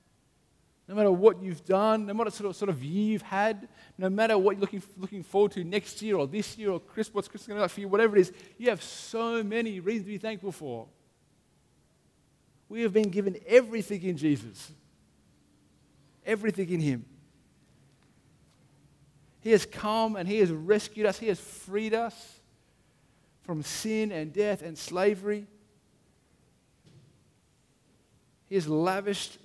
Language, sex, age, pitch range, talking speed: English, male, 50-69, 165-210 Hz, 165 wpm